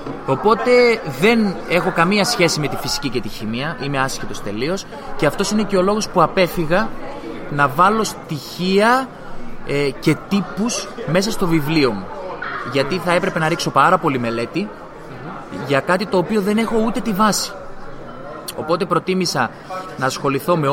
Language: Greek